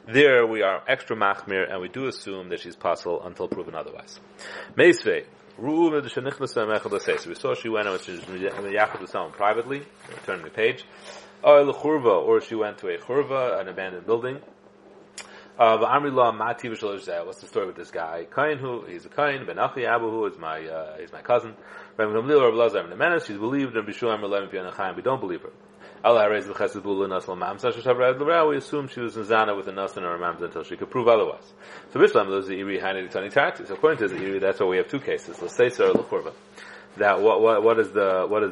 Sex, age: male, 30-49